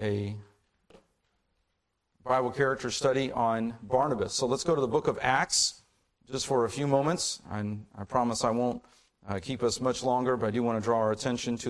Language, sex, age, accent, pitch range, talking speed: English, male, 40-59, American, 110-135 Hz, 195 wpm